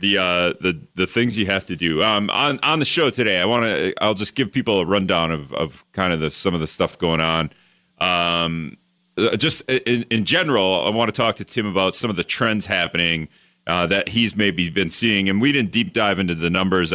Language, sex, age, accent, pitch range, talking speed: English, male, 40-59, American, 90-120 Hz, 235 wpm